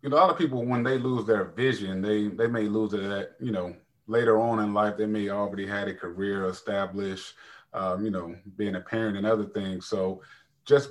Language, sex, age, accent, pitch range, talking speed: English, male, 30-49, American, 100-115 Hz, 225 wpm